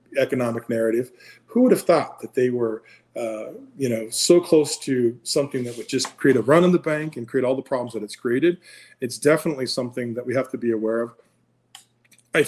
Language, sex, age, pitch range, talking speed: English, male, 40-59, 115-135 Hz, 210 wpm